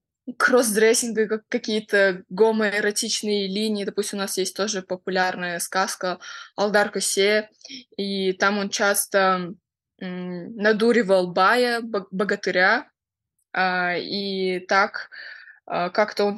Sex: female